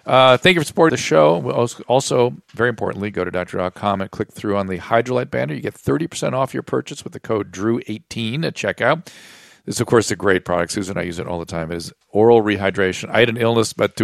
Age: 50-69